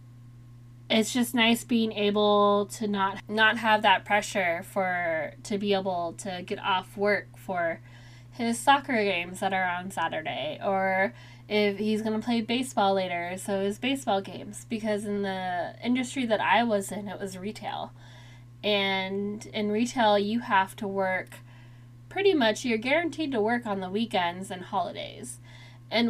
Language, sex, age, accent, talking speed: English, female, 10-29, American, 160 wpm